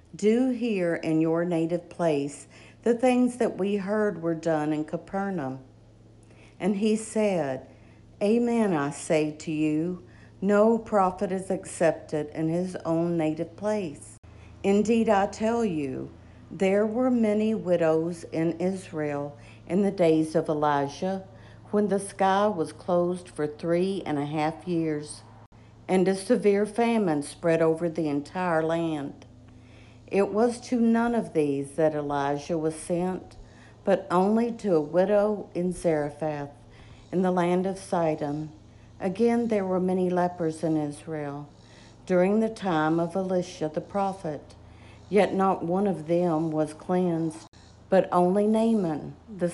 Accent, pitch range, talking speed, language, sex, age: American, 150-200 Hz, 140 wpm, English, female, 60-79